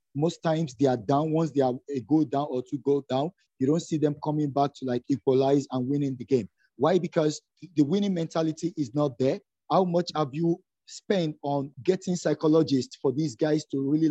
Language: English